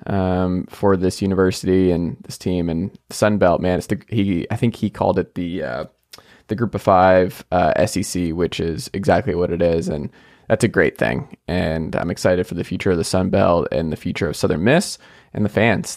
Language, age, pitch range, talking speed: English, 20-39, 90-110 Hz, 215 wpm